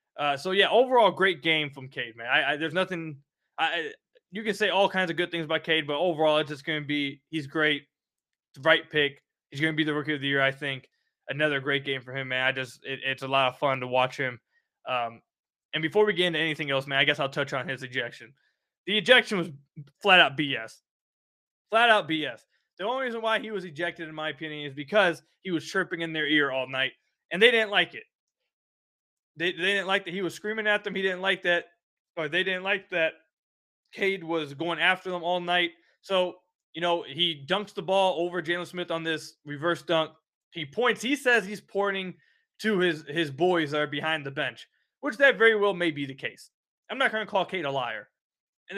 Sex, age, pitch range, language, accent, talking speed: male, 20-39, 150-195 Hz, English, American, 230 wpm